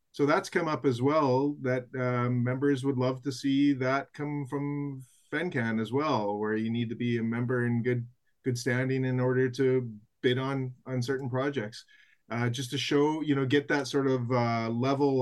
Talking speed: 195 wpm